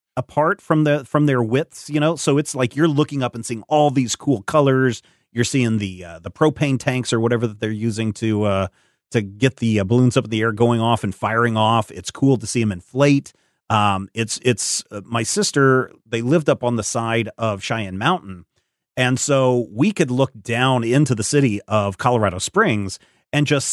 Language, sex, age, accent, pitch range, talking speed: English, male, 30-49, American, 110-140 Hz, 205 wpm